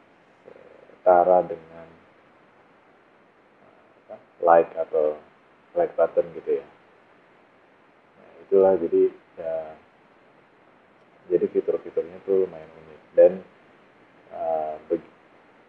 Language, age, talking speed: Indonesian, 30-49, 70 wpm